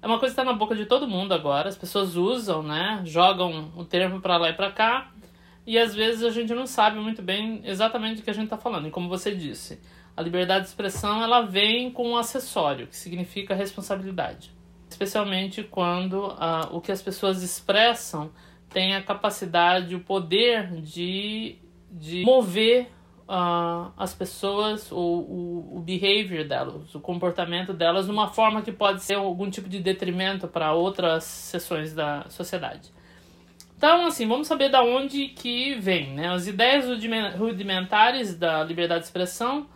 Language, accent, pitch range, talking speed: Portuguese, Brazilian, 175-225 Hz, 170 wpm